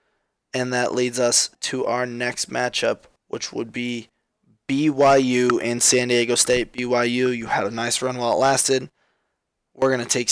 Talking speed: 170 wpm